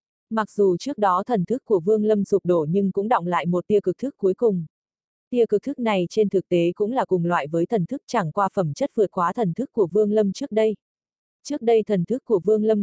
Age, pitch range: 20-39, 180-225 Hz